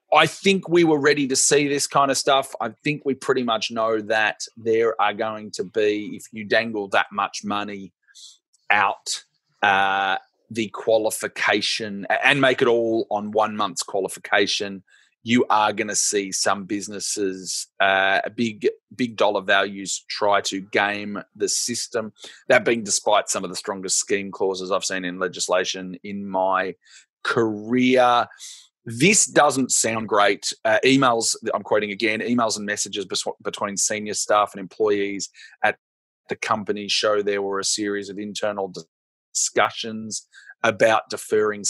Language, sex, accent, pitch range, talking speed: English, male, Australian, 100-130 Hz, 150 wpm